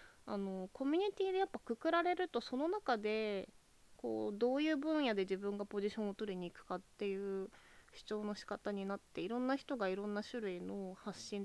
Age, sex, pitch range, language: 20-39, female, 185-235 Hz, Japanese